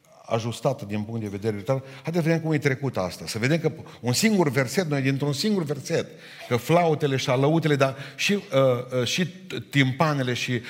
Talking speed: 190 wpm